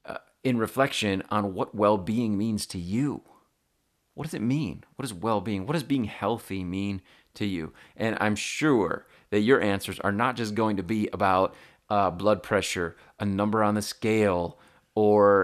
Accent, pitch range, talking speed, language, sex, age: American, 100-115 Hz, 170 wpm, English, male, 30-49